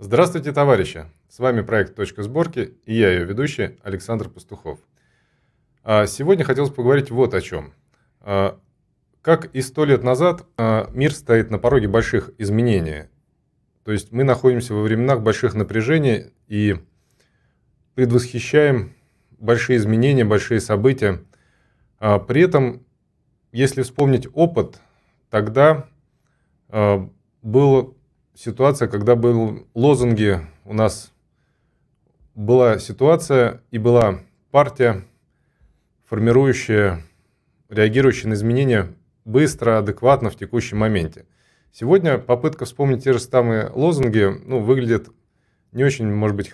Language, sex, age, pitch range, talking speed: Russian, male, 20-39, 105-130 Hz, 110 wpm